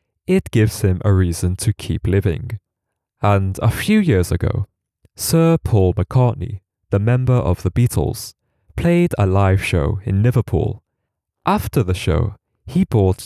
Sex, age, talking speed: male, 20-39, 145 wpm